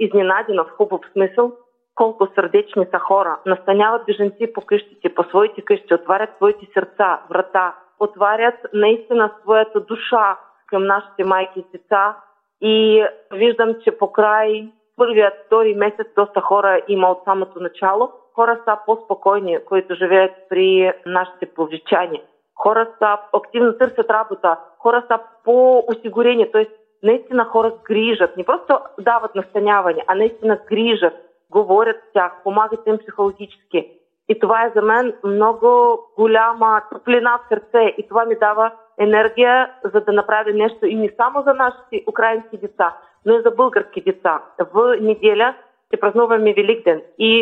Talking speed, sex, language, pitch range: 140 wpm, female, Bulgarian, 200-230 Hz